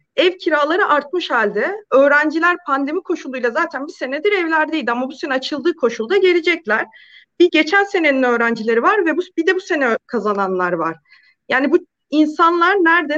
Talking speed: 155 wpm